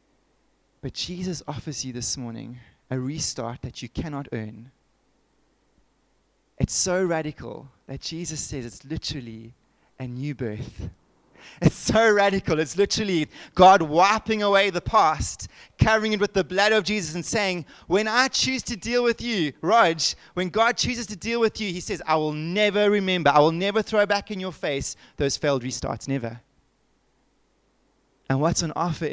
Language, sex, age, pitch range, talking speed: English, male, 20-39, 130-185 Hz, 165 wpm